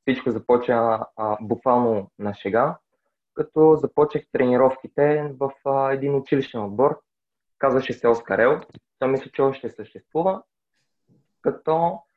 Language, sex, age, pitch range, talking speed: Bulgarian, male, 20-39, 115-140 Hz, 115 wpm